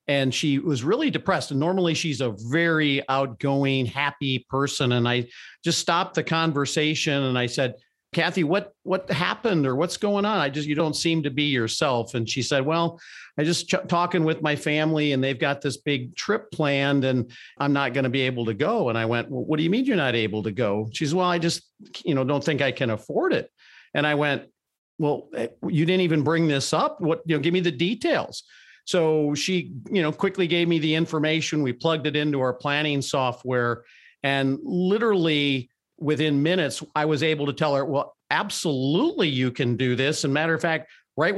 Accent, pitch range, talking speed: American, 130-170 Hz, 205 wpm